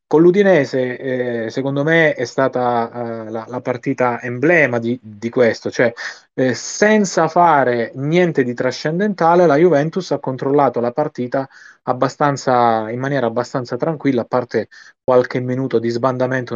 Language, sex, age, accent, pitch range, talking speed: Italian, male, 20-39, native, 120-135 Hz, 140 wpm